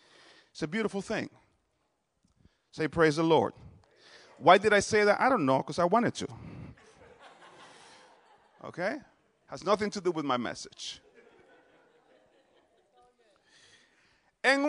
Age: 40-59